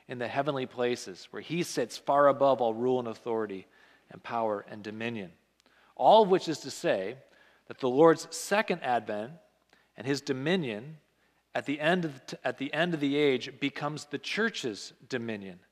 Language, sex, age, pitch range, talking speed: English, male, 40-59, 120-155 Hz, 170 wpm